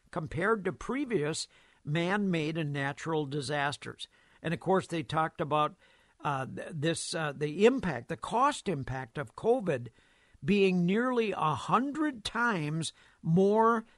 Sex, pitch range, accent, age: male, 150-200 Hz, American, 60-79